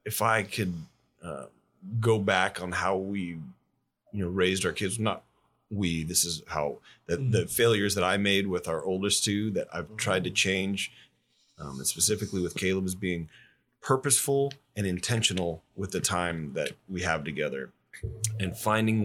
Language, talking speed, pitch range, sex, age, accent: English, 165 wpm, 90-105 Hz, male, 30-49, American